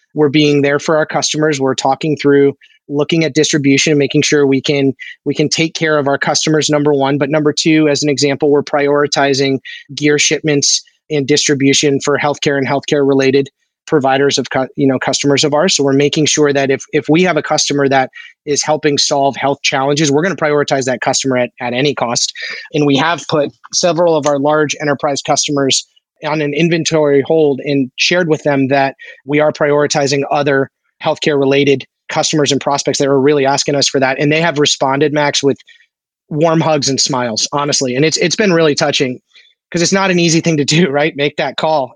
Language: English